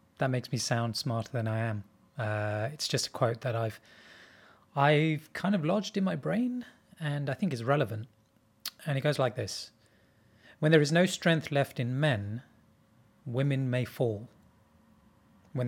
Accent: British